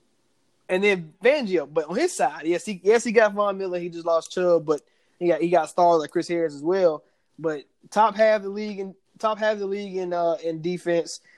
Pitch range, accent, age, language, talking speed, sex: 165-195 Hz, American, 20-39, English, 260 wpm, male